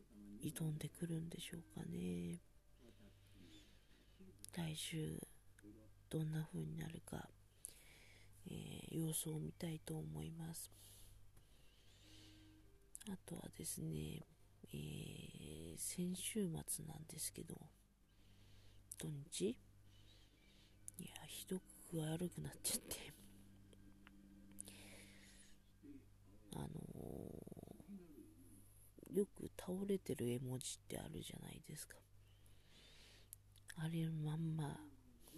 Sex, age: female, 40-59